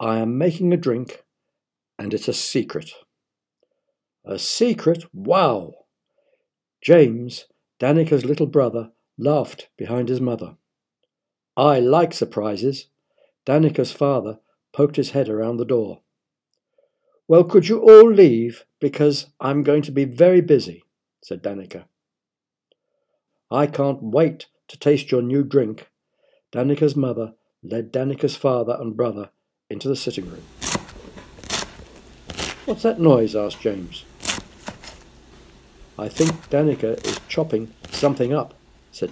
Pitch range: 115-155 Hz